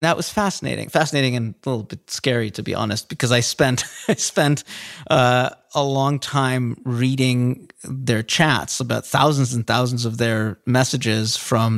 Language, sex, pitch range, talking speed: English, male, 115-145 Hz, 165 wpm